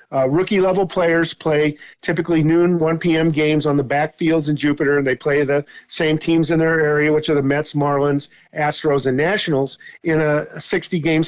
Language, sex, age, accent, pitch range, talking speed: English, male, 50-69, American, 145-170 Hz, 180 wpm